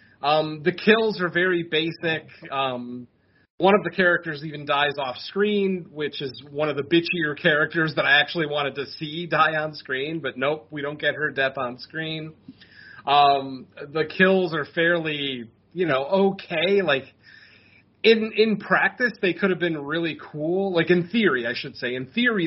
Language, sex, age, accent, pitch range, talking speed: English, male, 30-49, American, 135-170 Hz, 175 wpm